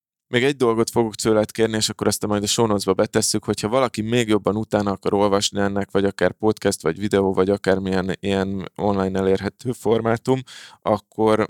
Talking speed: 170 wpm